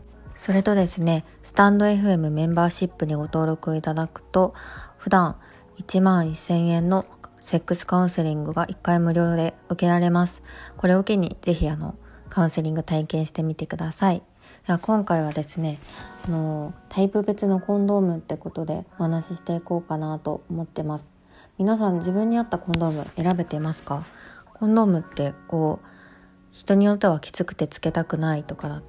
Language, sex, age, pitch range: Japanese, female, 20-39, 155-180 Hz